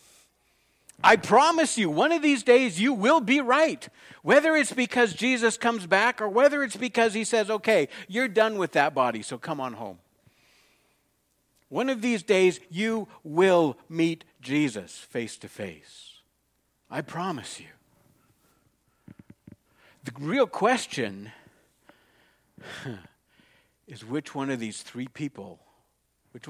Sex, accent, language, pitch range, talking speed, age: male, American, English, 110-175 Hz, 130 wpm, 60-79